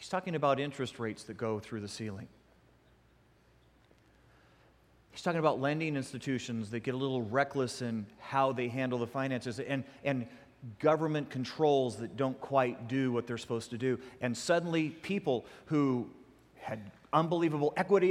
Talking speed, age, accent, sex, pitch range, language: 150 wpm, 40-59, American, male, 125-190 Hz, English